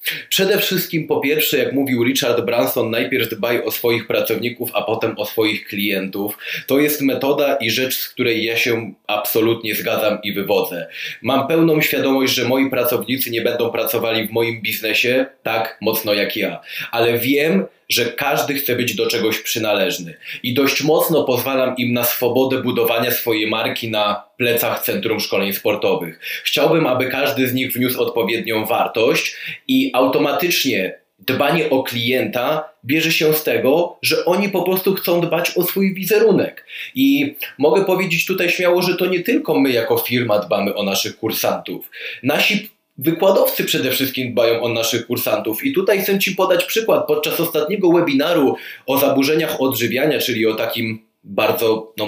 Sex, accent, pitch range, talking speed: male, native, 115-165 Hz, 160 wpm